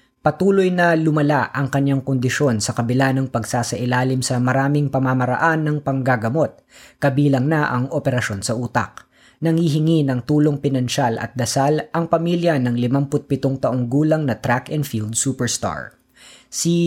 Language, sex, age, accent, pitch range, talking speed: Filipino, female, 20-39, native, 125-155 Hz, 140 wpm